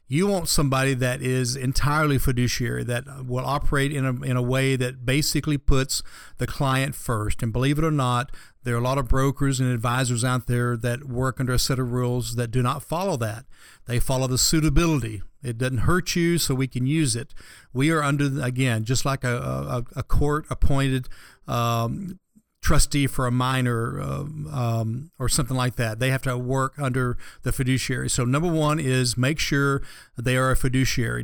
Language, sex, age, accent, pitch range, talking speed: English, male, 50-69, American, 125-150 Hz, 190 wpm